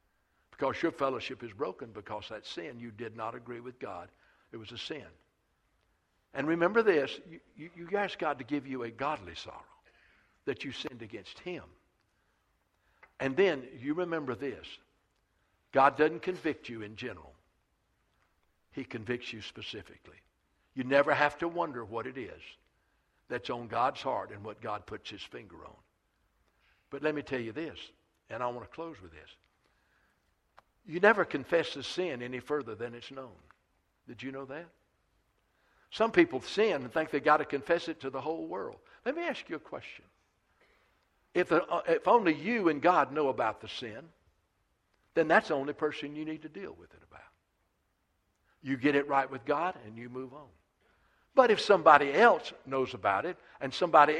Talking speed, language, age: 175 wpm, English, 60-79